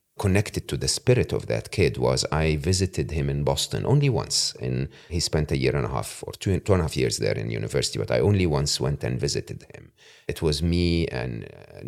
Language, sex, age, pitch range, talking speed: English, male, 40-59, 80-110 Hz, 235 wpm